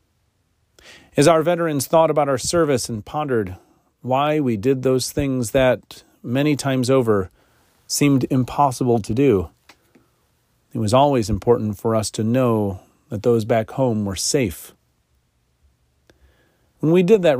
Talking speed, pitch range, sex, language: 140 wpm, 100-135 Hz, male, English